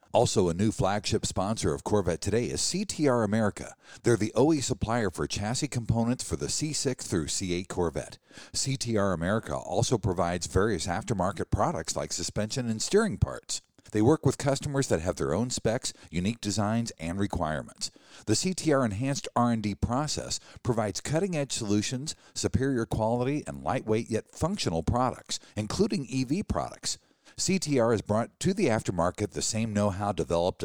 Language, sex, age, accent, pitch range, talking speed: English, male, 50-69, American, 105-140 Hz, 155 wpm